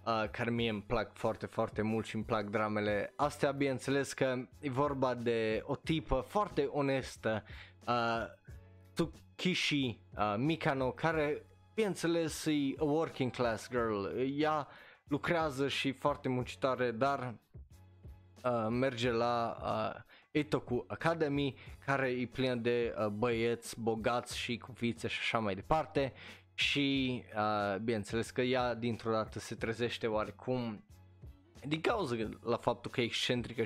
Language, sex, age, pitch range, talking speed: Romanian, male, 20-39, 110-140 Hz, 135 wpm